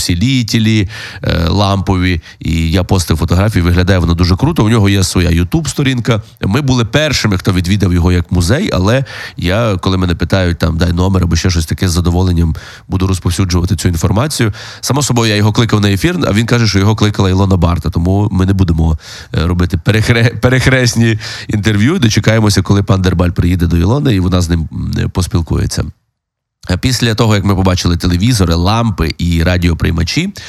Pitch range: 90-110 Hz